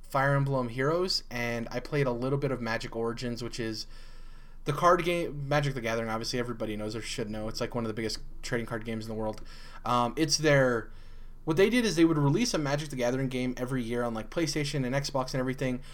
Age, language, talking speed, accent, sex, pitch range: 20-39, English, 235 wpm, American, male, 115-145 Hz